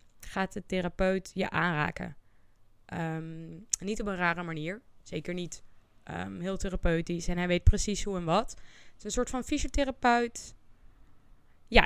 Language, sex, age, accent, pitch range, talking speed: Dutch, female, 20-39, Dutch, 155-205 Hz, 140 wpm